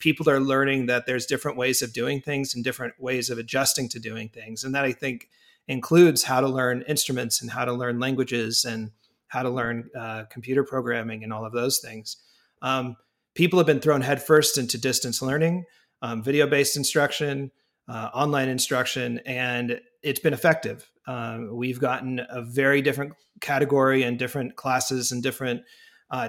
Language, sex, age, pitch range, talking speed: English, male, 30-49, 120-140 Hz, 175 wpm